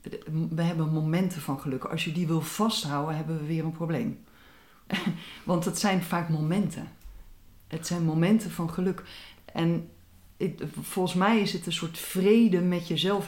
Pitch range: 145-185 Hz